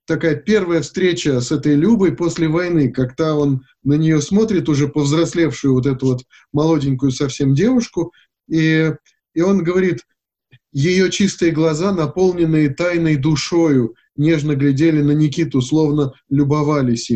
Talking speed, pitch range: 130 wpm, 145-175 Hz